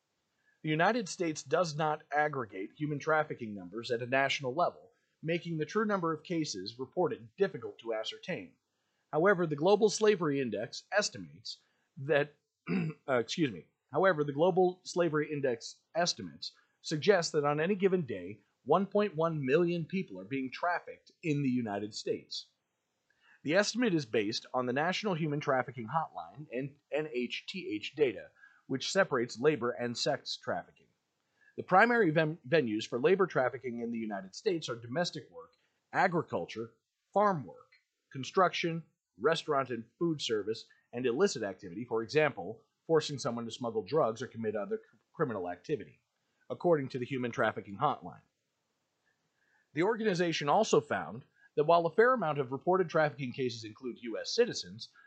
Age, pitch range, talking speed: 40-59, 130-185 Hz, 145 wpm